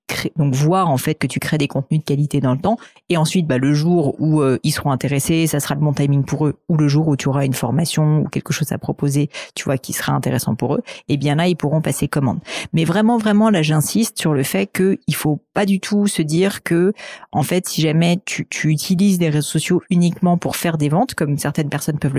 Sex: female